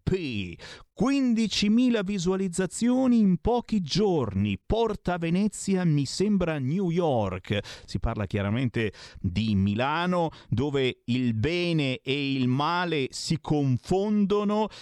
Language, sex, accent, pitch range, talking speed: Italian, male, native, 115-180 Hz, 95 wpm